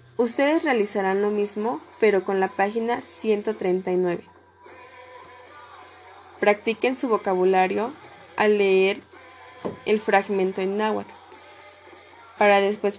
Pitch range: 185-225 Hz